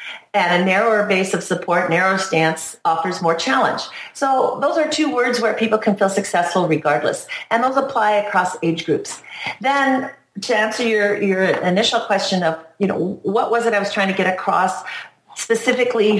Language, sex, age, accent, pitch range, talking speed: English, female, 40-59, American, 170-220 Hz, 180 wpm